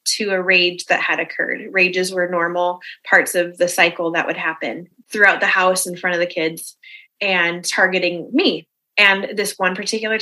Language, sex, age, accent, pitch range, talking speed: English, female, 20-39, American, 180-235 Hz, 180 wpm